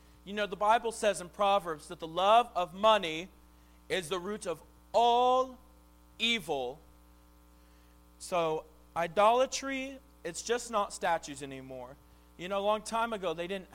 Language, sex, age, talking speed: English, male, 40-59, 145 wpm